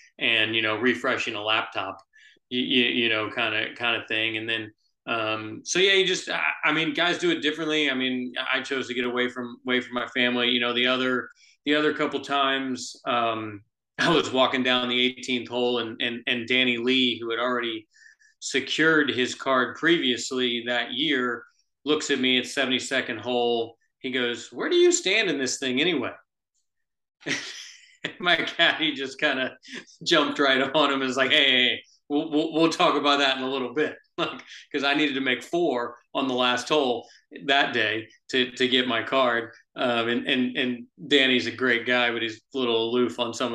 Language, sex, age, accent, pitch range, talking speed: English, male, 30-49, American, 120-135 Hz, 200 wpm